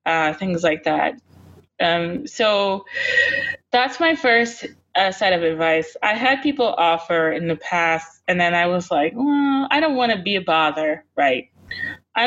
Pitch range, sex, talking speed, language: 170-245 Hz, female, 170 wpm, English